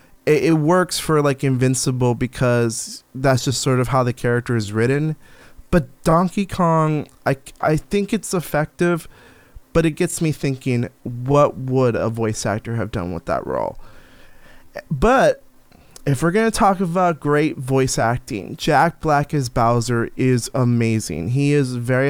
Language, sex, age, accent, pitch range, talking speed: English, male, 20-39, American, 125-155 Hz, 155 wpm